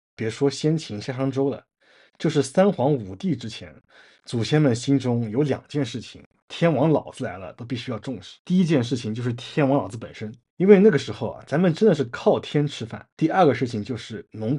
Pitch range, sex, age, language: 110-150 Hz, male, 20-39, Chinese